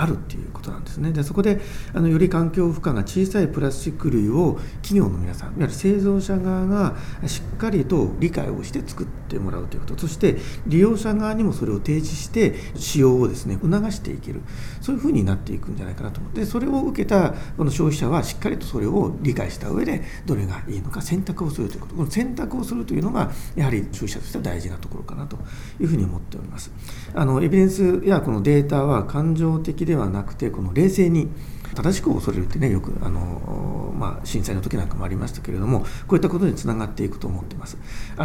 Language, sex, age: Japanese, male, 40-59